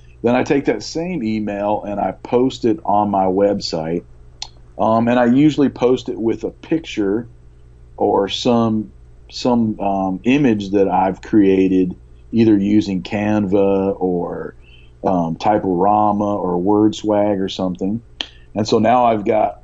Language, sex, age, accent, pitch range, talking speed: English, male, 40-59, American, 95-115 Hz, 145 wpm